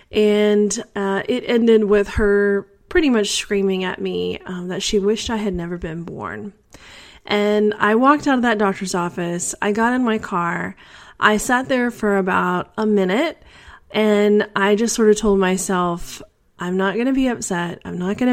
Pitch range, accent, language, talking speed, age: 180-215 Hz, American, English, 185 wpm, 30-49